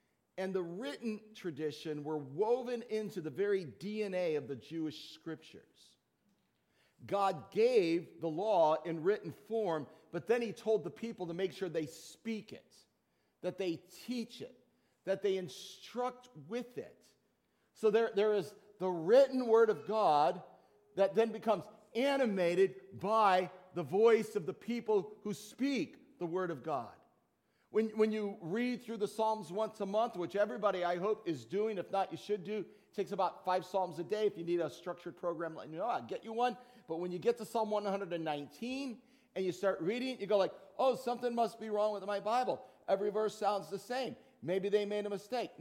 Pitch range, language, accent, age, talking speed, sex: 175-225 Hz, English, American, 50-69, 185 wpm, male